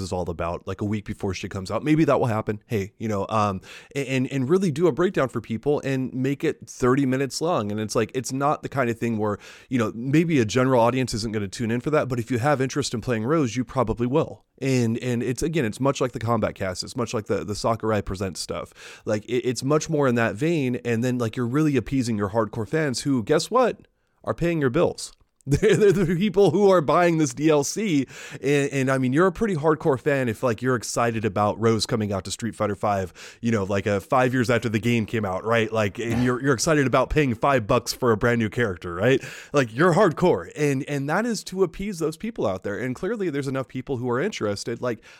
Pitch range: 115-145 Hz